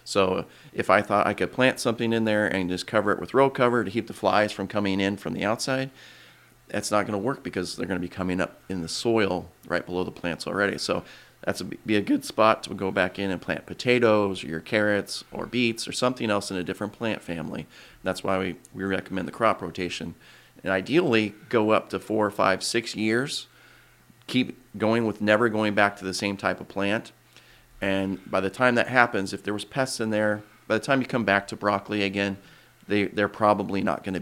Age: 30-49